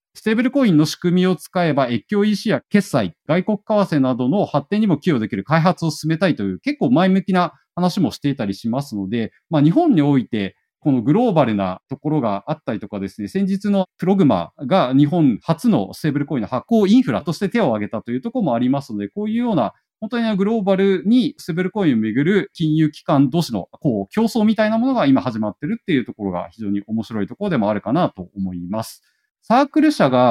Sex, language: male, Japanese